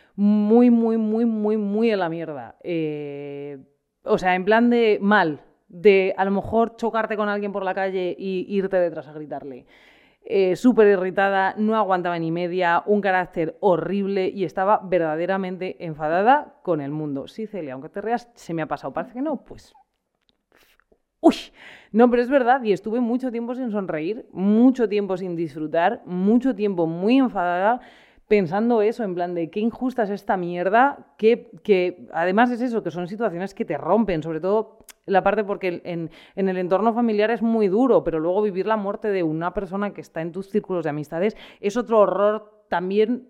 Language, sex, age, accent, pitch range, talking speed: Spanish, female, 30-49, Spanish, 175-225 Hz, 185 wpm